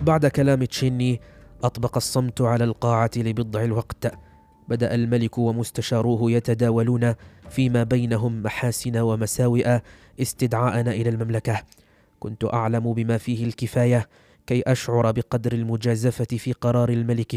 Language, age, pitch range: Arabic, 20-39, 115-125 Hz